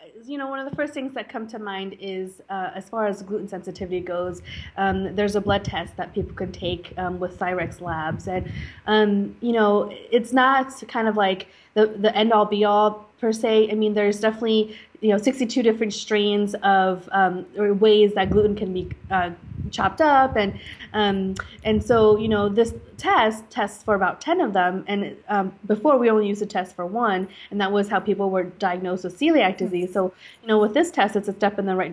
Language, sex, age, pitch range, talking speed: English, female, 20-39, 185-215 Hz, 215 wpm